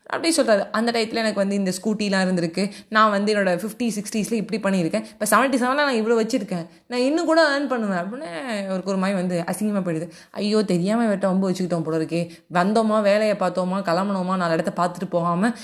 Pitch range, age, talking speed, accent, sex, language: 175-230 Hz, 20-39, 180 wpm, native, female, Tamil